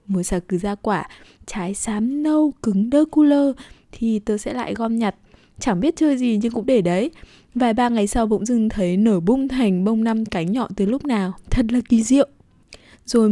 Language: Vietnamese